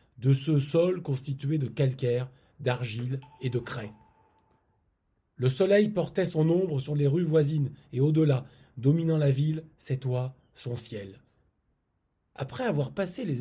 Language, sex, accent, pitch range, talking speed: French, male, French, 130-175 Hz, 150 wpm